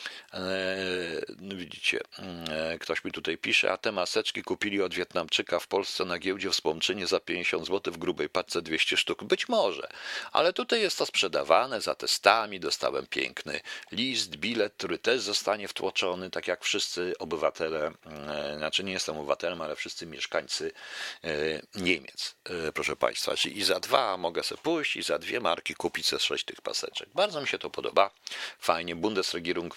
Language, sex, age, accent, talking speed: Polish, male, 50-69, native, 155 wpm